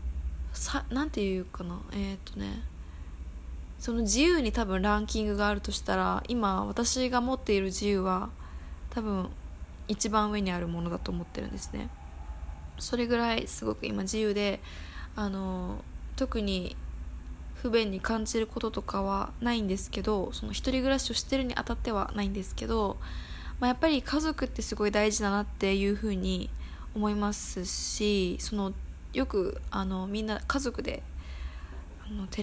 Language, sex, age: Japanese, female, 20-39